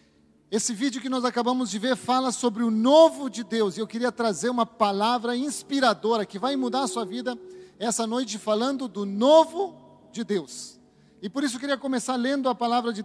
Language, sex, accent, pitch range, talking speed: Portuguese, male, Brazilian, 210-255 Hz, 200 wpm